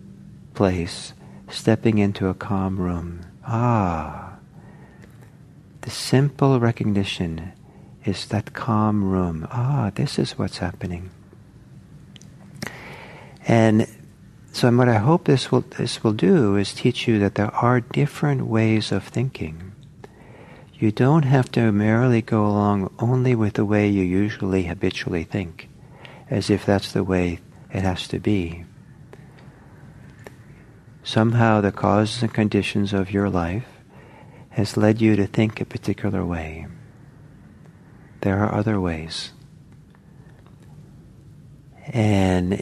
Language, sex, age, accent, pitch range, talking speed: English, male, 50-69, American, 95-125 Hz, 120 wpm